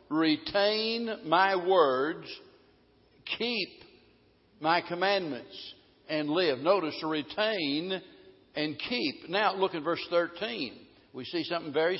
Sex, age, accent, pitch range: male, 60-79, American, 155-200 Hz